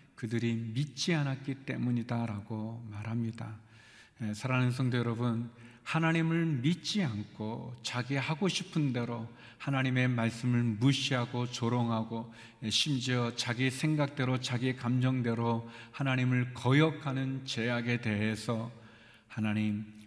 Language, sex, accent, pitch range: Korean, male, native, 115-140 Hz